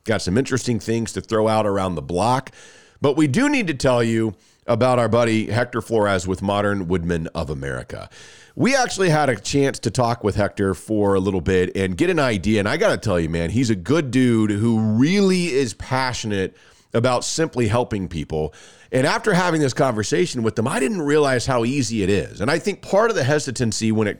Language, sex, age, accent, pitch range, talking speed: English, male, 40-59, American, 105-140 Hz, 215 wpm